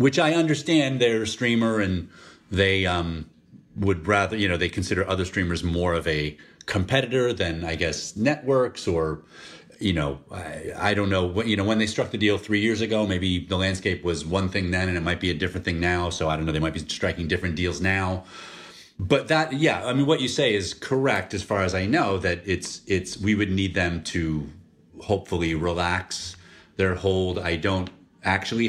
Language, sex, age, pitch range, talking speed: English, male, 30-49, 85-110 Hz, 205 wpm